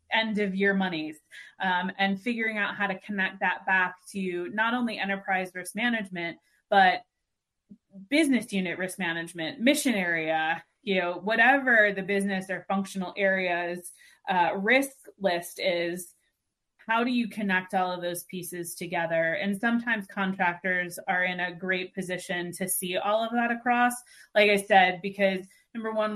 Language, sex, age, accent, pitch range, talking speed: English, female, 20-39, American, 175-200 Hz, 155 wpm